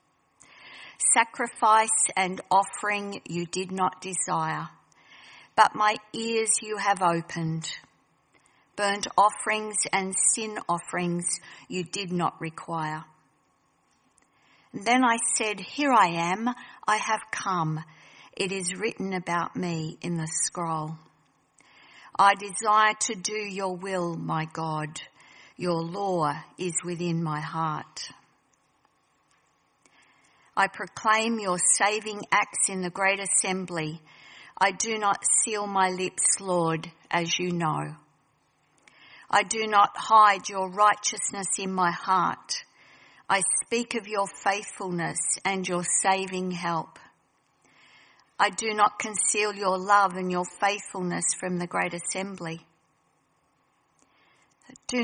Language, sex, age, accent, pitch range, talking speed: English, female, 50-69, Australian, 170-210 Hz, 115 wpm